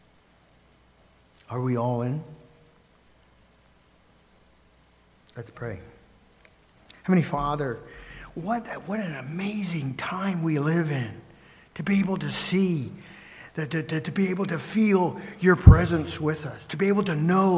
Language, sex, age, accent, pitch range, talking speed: English, male, 50-69, American, 120-165 Hz, 125 wpm